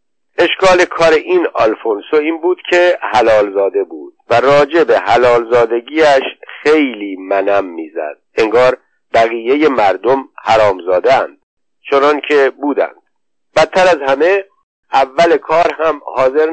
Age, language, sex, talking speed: 50-69, Persian, male, 120 wpm